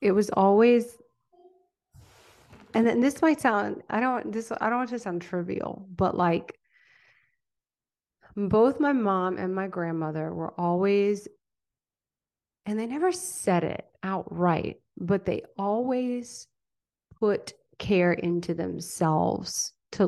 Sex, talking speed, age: female, 125 wpm, 30-49